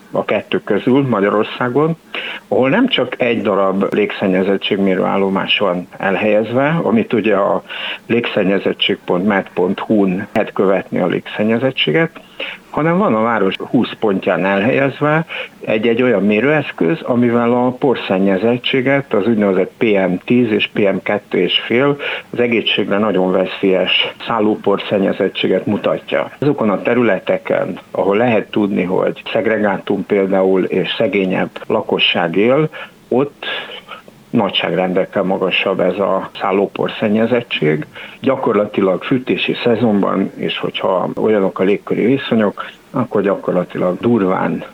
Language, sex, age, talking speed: Hungarian, male, 60-79, 105 wpm